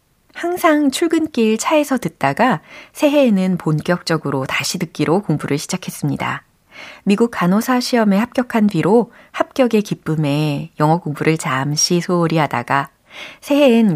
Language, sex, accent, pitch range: Korean, female, native, 160-235 Hz